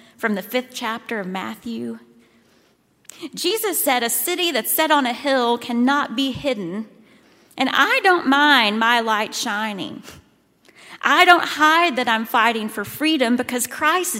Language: English